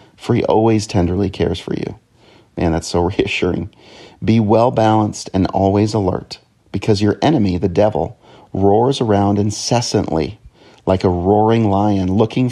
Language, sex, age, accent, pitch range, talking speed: English, male, 40-59, American, 90-110 Hz, 145 wpm